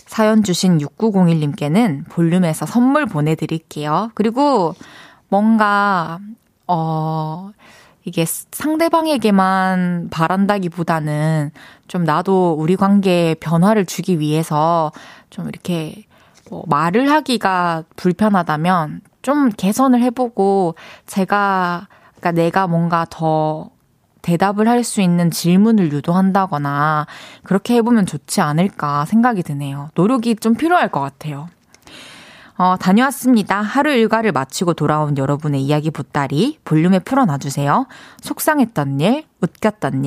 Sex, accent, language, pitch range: female, native, Korean, 160-230 Hz